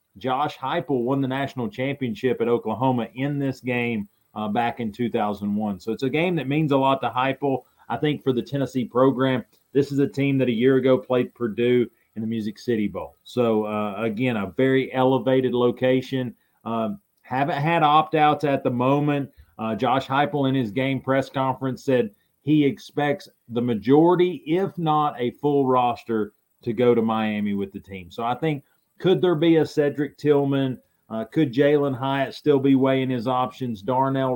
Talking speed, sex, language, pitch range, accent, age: 180 wpm, male, English, 115-140 Hz, American, 30-49